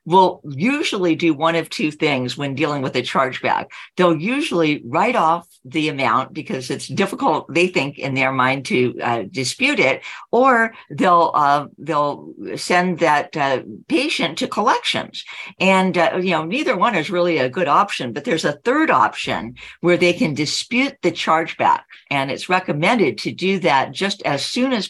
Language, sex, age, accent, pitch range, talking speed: English, female, 50-69, American, 140-190 Hz, 175 wpm